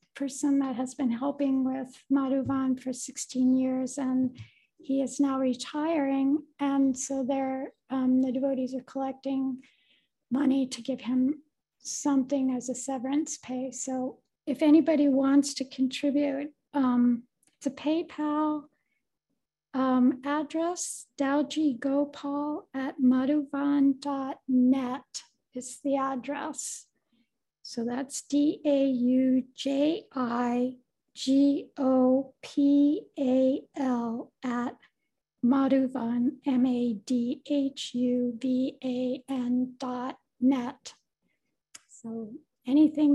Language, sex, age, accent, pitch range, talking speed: English, female, 60-79, American, 255-285 Hz, 85 wpm